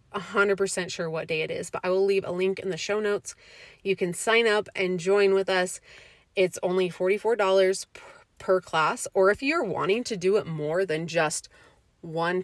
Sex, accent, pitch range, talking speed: female, American, 175-215 Hz, 190 wpm